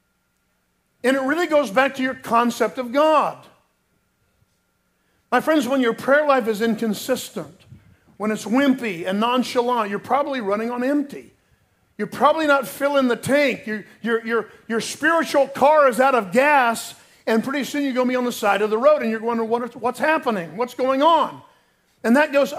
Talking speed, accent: 190 wpm, American